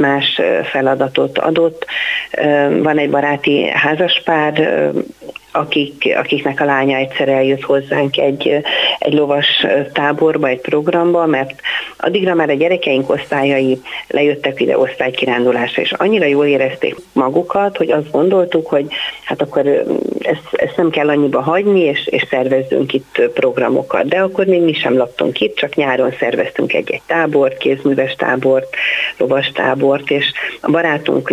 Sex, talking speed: female, 135 wpm